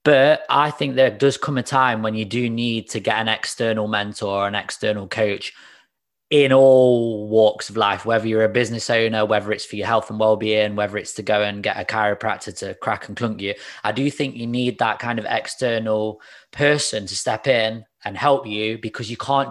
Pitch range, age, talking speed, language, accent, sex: 105-120 Hz, 20-39, 215 wpm, English, British, male